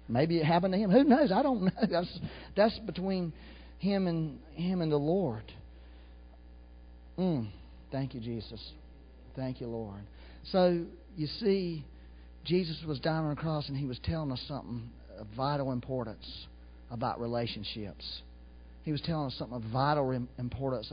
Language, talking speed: English, 155 wpm